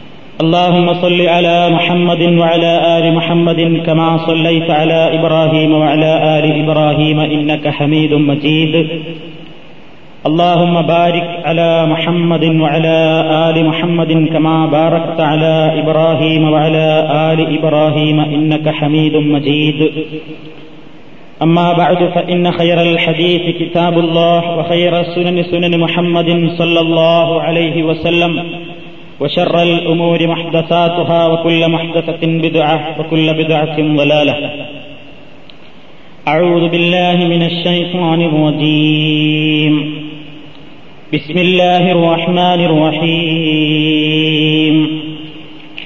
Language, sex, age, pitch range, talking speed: Malayalam, male, 30-49, 155-170 Hz, 90 wpm